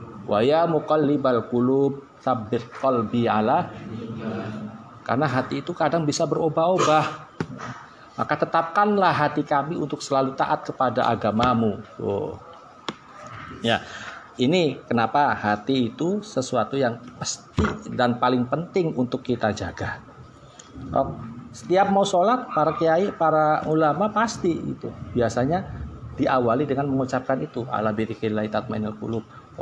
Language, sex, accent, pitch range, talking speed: Indonesian, male, native, 110-140 Hz, 100 wpm